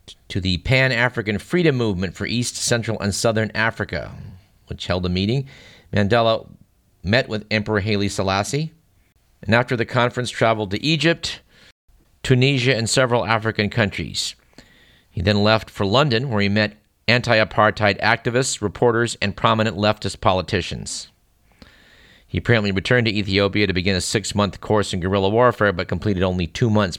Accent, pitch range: American, 95-120 Hz